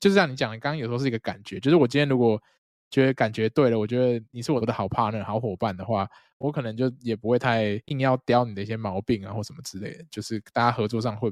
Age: 20-39